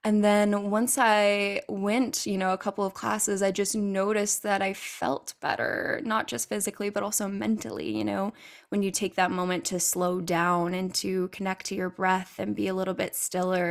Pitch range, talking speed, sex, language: 170-195 Hz, 200 wpm, female, English